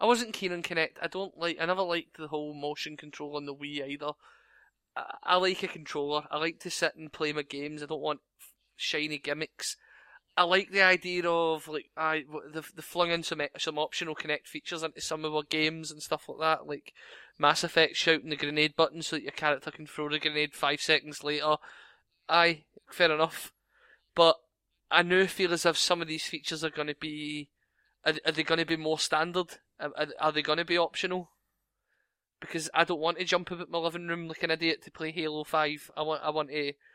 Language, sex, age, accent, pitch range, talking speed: English, male, 20-39, British, 150-170 Hz, 220 wpm